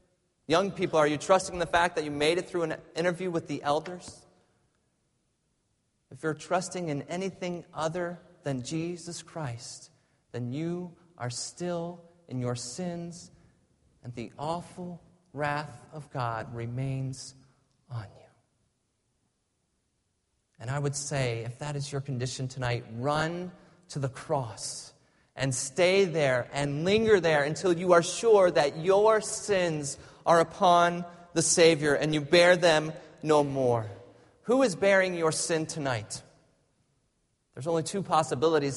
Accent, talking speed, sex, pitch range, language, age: American, 140 wpm, male, 135-175 Hz, English, 30-49